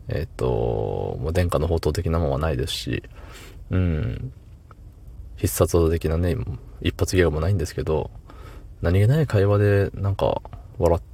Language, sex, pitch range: Japanese, male, 85-105 Hz